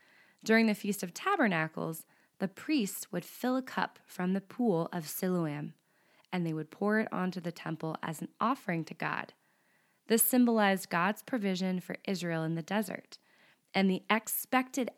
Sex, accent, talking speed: female, American, 165 wpm